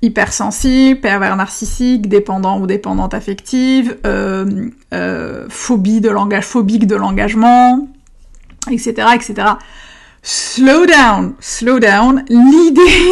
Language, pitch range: French, 205-245 Hz